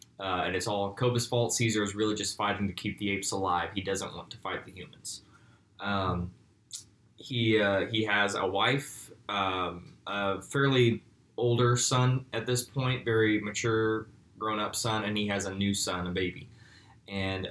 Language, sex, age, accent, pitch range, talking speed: English, male, 20-39, American, 100-115 Hz, 180 wpm